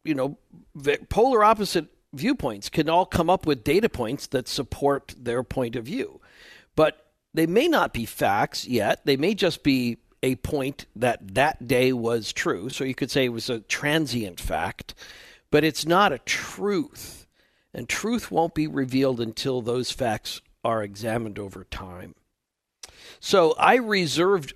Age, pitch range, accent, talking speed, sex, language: 50-69, 120-175 Hz, American, 160 wpm, male, English